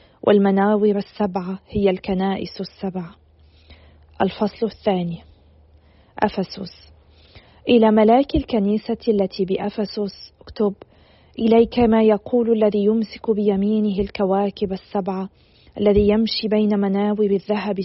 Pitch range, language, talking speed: 195-220 Hz, Arabic, 90 wpm